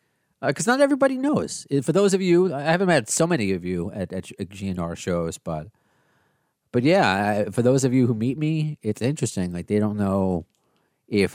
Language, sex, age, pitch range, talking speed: English, male, 30-49, 95-120 Hz, 210 wpm